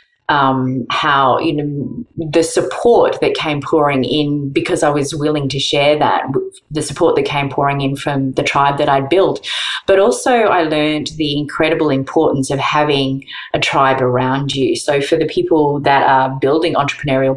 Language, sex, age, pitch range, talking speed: English, female, 30-49, 130-155 Hz, 175 wpm